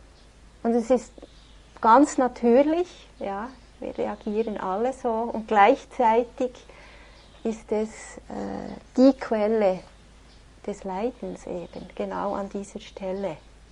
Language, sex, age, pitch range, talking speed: English, female, 30-49, 210-255 Hz, 105 wpm